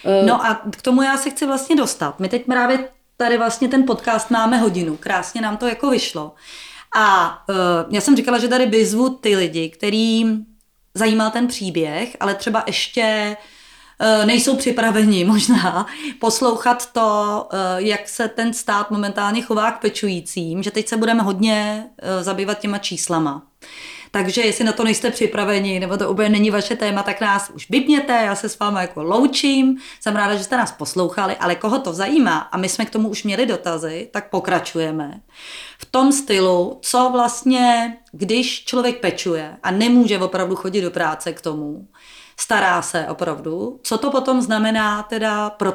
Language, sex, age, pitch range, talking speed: Czech, female, 30-49, 195-245 Hz, 170 wpm